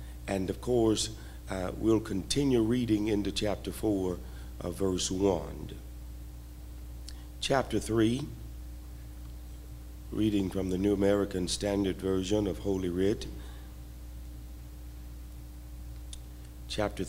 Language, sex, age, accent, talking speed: English, male, 60-79, American, 90 wpm